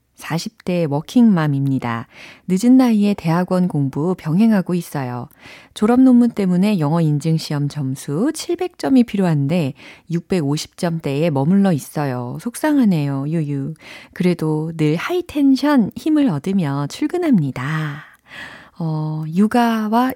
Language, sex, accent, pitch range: Korean, female, native, 145-210 Hz